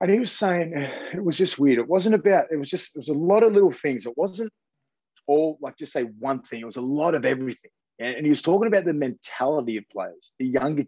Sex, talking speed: male, 255 wpm